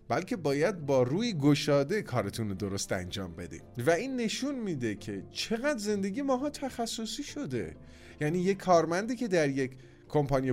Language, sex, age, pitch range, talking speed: Persian, male, 30-49, 110-175 Hz, 155 wpm